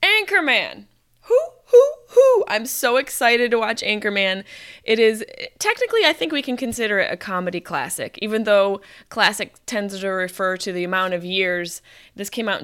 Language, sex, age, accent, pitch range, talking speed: English, female, 20-39, American, 180-250 Hz, 170 wpm